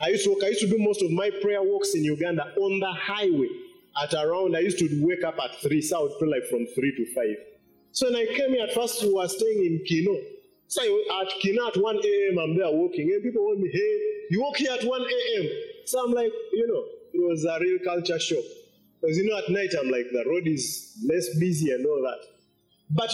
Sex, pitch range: male, 165-250 Hz